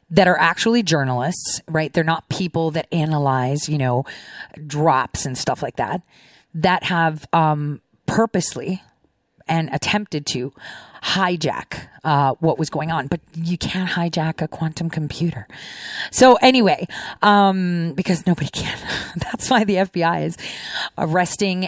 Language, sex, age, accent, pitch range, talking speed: English, female, 30-49, American, 155-195 Hz, 135 wpm